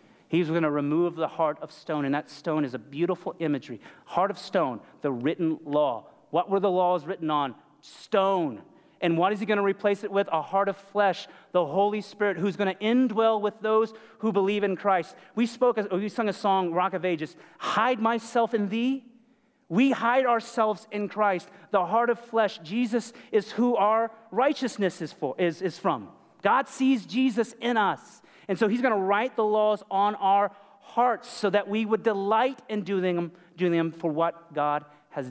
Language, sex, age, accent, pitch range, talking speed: English, male, 30-49, American, 150-210 Hz, 195 wpm